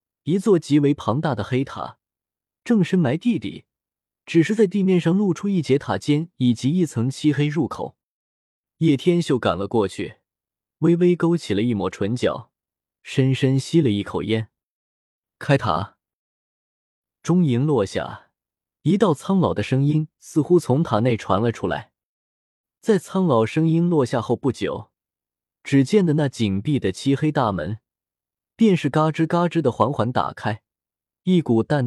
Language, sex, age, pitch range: Chinese, male, 20-39, 110-165 Hz